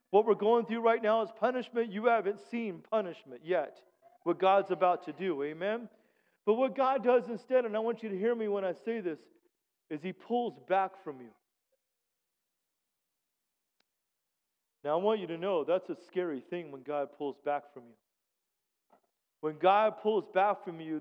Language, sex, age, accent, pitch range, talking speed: English, male, 40-59, American, 195-265 Hz, 180 wpm